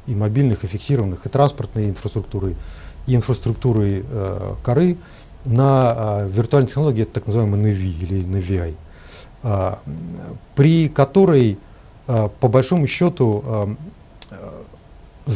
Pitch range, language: 100-135 Hz, Russian